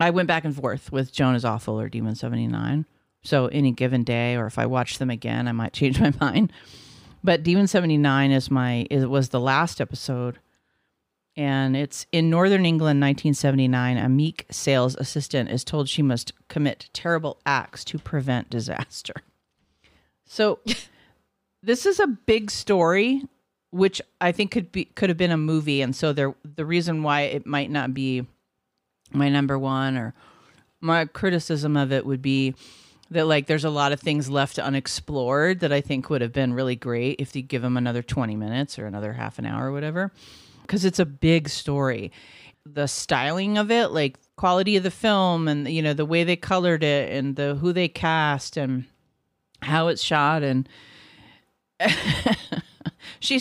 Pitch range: 130-165 Hz